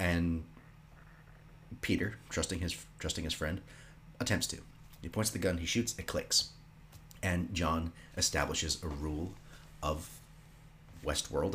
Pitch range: 80-110 Hz